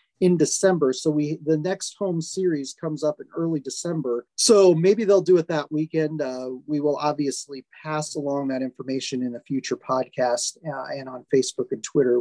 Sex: male